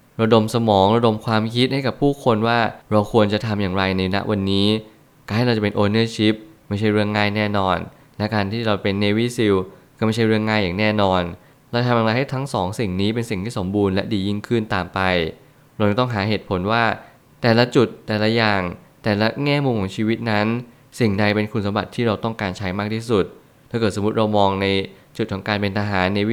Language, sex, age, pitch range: Thai, male, 20-39, 100-120 Hz